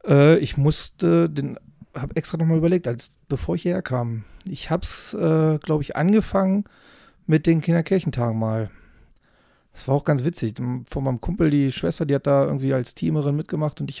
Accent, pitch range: German, 125-150 Hz